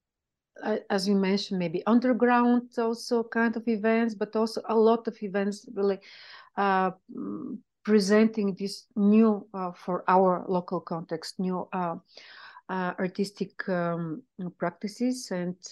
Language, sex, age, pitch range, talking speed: English, female, 40-59, 185-230 Hz, 120 wpm